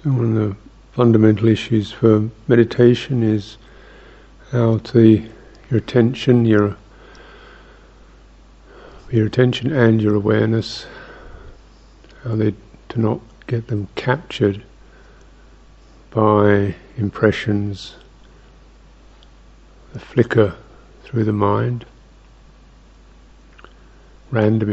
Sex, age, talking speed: male, 50-69, 85 wpm